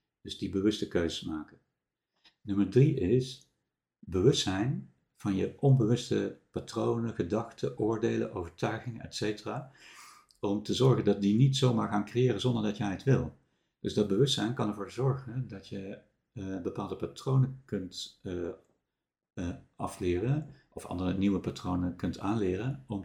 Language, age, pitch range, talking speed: Dutch, 60-79, 90-115 Hz, 140 wpm